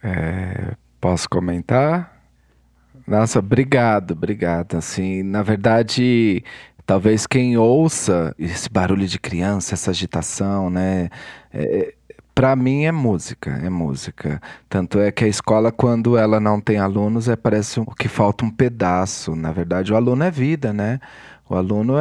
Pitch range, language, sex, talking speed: 95-130 Hz, Portuguese, male, 130 wpm